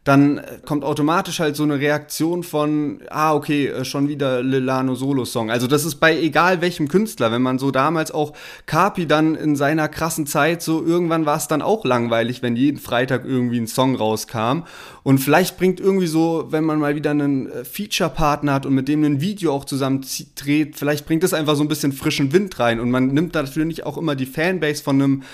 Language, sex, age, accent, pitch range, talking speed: German, male, 30-49, German, 140-175 Hz, 200 wpm